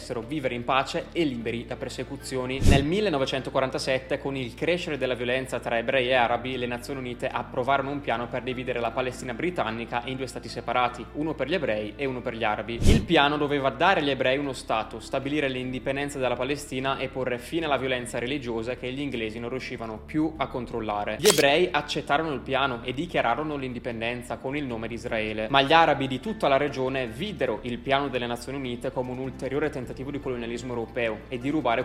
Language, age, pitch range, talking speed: Italian, 20-39, 120-140 Hz, 195 wpm